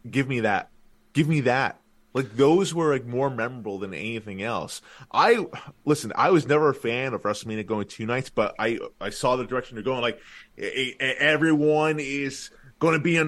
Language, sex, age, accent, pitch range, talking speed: English, male, 20-39, American, 120-155 Hz, 190 wpm